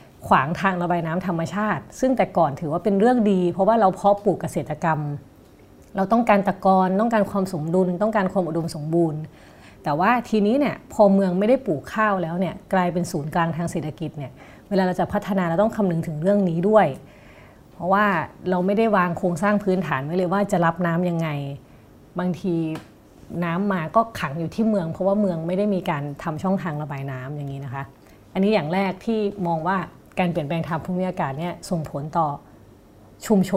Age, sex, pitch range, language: 30-49, female, 160-200 Hz, Thai